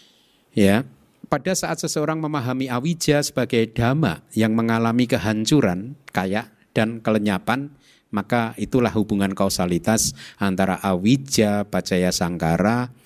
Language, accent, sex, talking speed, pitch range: Indonesian, native, male, 100 wpm, 95-130 Hz